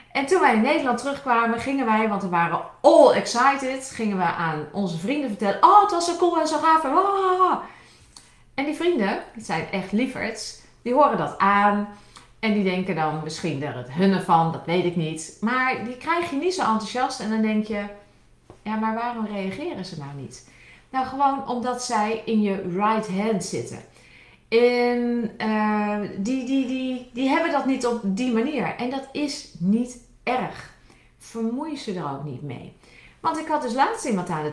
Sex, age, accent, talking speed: female, 40-59, Dutch, 190 wpm